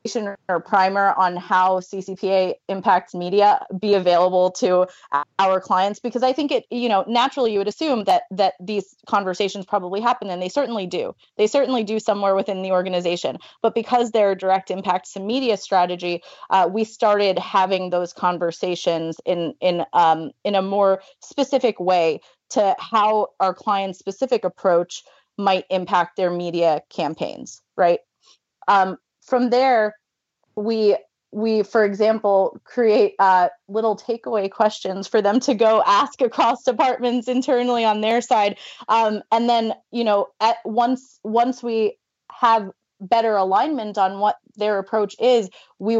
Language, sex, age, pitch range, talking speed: English, female, 30-49, 185-225 Hz, 145 wpm